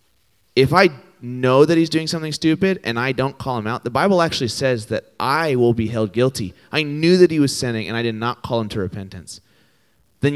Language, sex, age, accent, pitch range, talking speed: English, male, 30-49, American, 100-125 Hz, 225 wpm